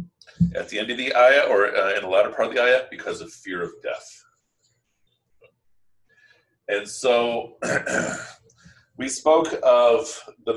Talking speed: 150 wpm